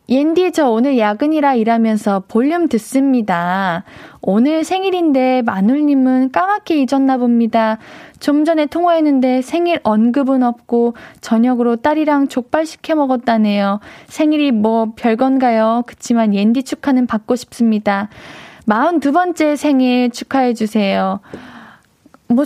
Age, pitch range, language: 20-39, 225-290 Hz, Korean